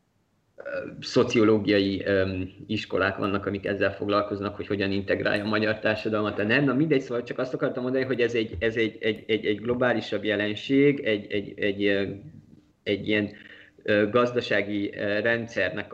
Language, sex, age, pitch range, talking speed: Hungarian, male, 30-49, 105-130 Hz, 145 wpm